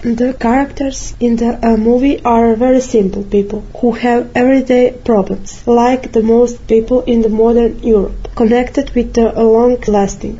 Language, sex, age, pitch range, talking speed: English, female, 20-39, 225-250 Hz, 150 wpm